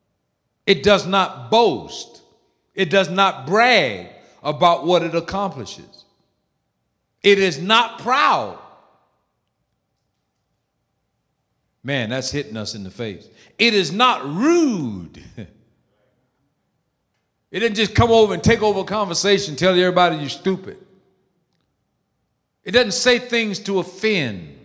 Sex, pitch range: male, 170-230 Hz